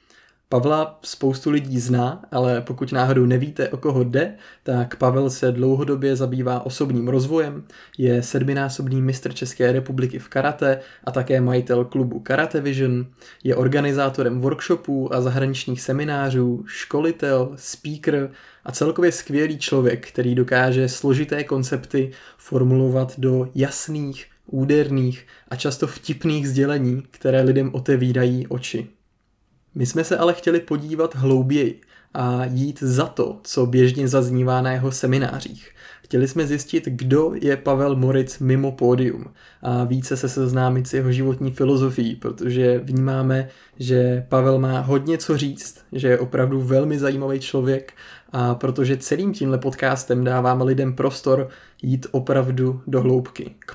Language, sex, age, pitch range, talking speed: Czech, male, 20-39, 125-140 Hz, 135 wpm